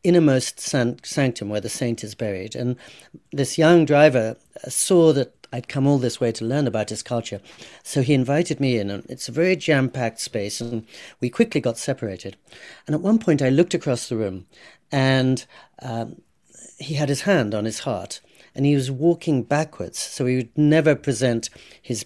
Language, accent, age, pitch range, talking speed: English, British, 40-59, 120-155 Hz, 185 wpm